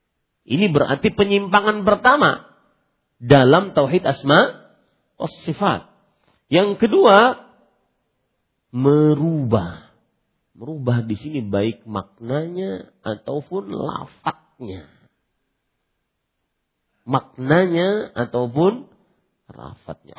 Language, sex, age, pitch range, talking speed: Malay, male, 40-59, 140-215 Hz, 60 wpm